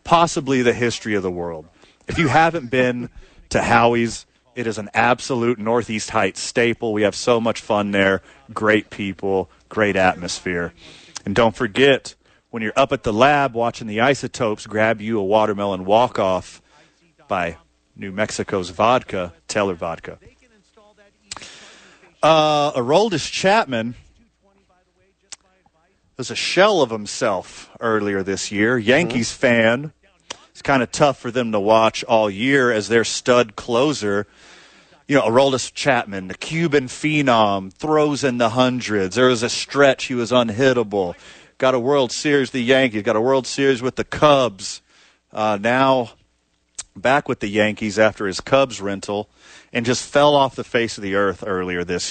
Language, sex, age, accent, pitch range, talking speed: English, male, 40-59, American, 100-130 Hz, 150 wpm